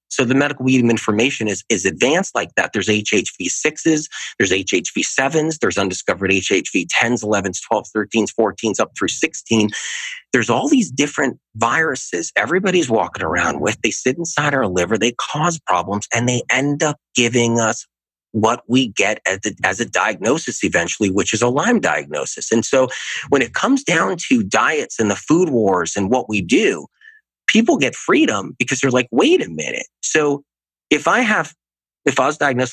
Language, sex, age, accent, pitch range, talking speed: English, male, 30-49, American, 100-140 Hz, 170 wpm